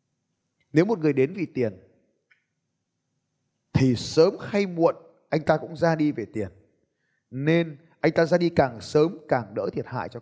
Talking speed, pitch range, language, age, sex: 170 wpm, 120-165 Hz, Vietnamese, 20-39, male